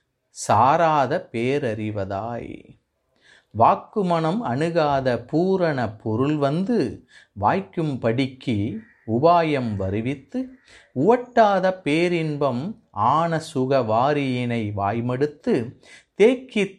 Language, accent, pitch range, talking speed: Tamil, native, 130-180 Hz, 60 wpm